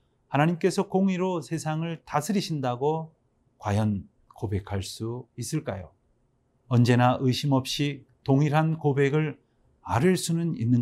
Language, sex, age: Korean, male, 40-59